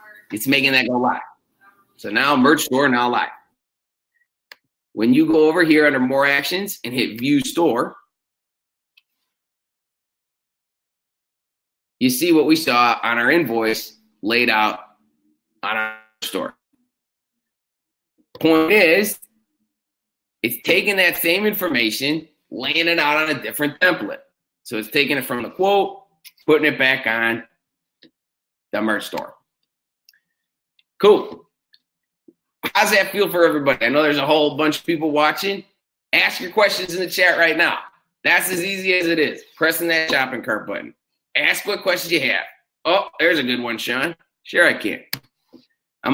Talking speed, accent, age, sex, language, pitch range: 145 wpm, American, 30-49, male, English, 130-195 Hz